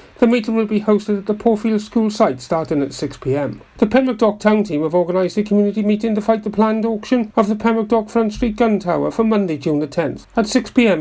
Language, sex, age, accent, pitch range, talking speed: English, male, 40-59, British, 175-215 Hz, 230 wpm